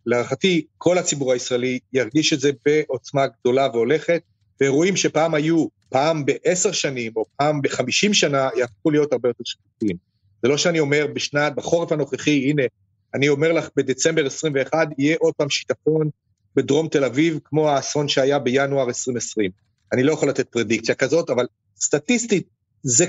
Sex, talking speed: male, 155 wpm